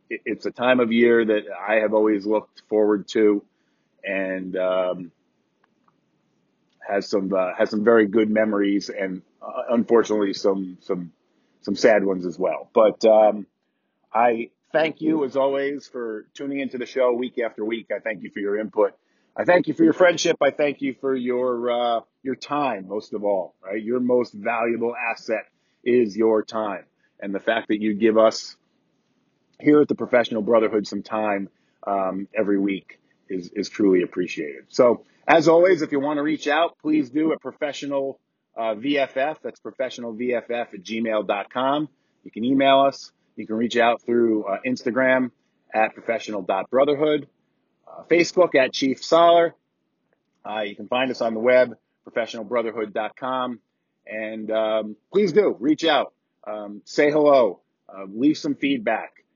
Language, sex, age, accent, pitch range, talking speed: English, male, 40-59, American, 105-140 Hz, 160 wpm